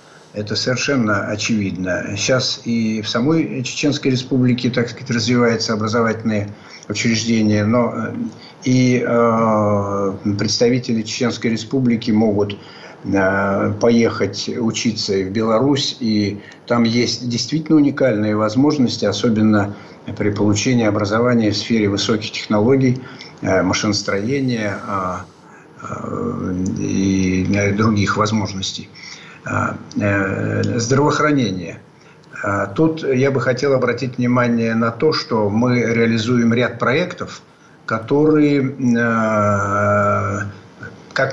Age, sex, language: 50-69, male, Russian